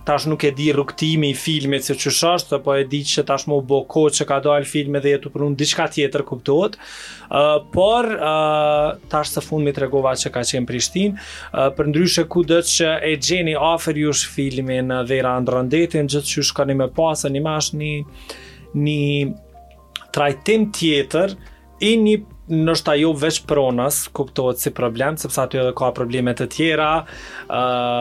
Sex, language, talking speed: male, English, 120 wpm